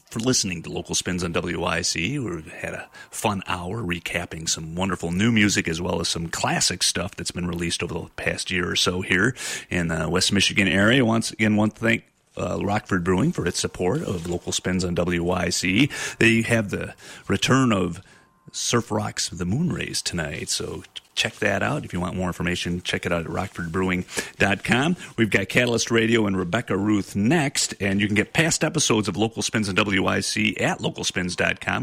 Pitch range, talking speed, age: 90-110 Hz, 190 wpm, 30-49